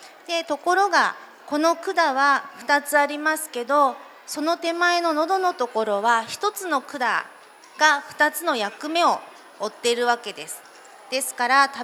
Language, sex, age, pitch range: Japanese, female, 40-59, 245-315 Hz